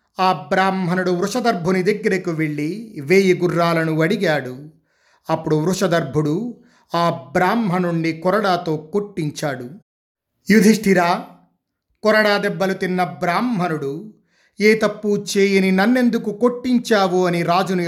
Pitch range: 150-195 Hz